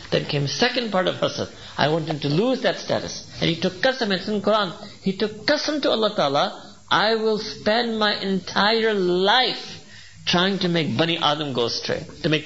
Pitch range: 145-210 Hz